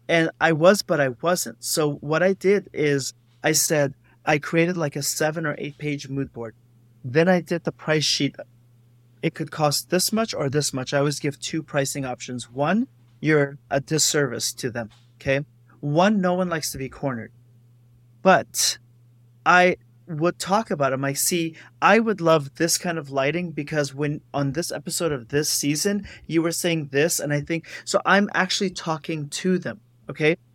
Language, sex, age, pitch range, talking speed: English, male, 30-49, 130-175 Hz, 185 wpm